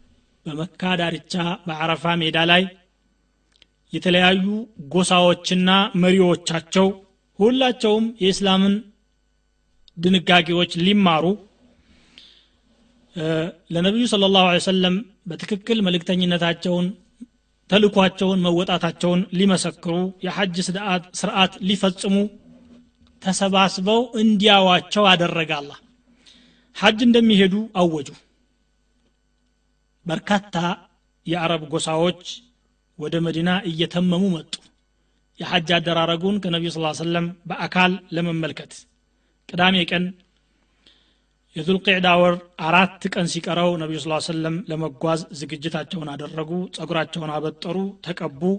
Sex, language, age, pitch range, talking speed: male, Amharic, 30-49, 165-195 Hz, 90 wpm